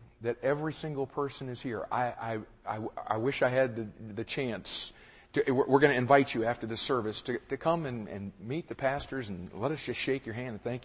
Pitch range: 115-145 Hz